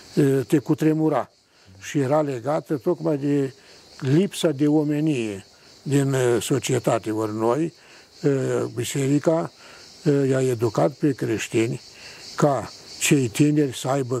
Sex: male